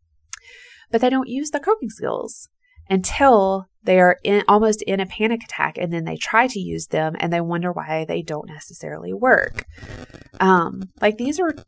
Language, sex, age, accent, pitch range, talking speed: English, female, 20-39, American, 160-220 Hz, 180 wpm